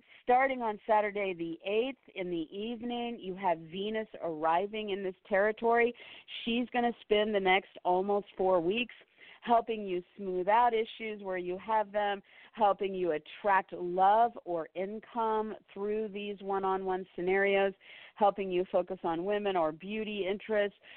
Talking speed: 145 wpm